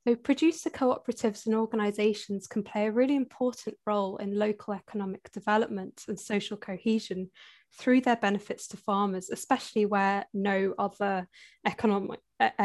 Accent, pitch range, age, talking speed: British, 200-235 Hz, 10-29, 135 wpm